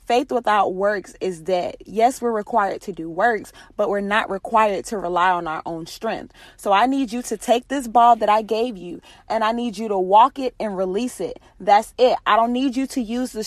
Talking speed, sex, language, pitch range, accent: 230 wpm, female, English, 195-245 Hz, American